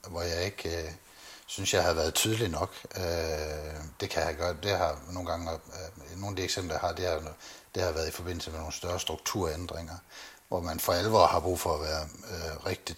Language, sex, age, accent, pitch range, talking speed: Danish, male, 60-79, native, 80-95 Hz, 210 wpm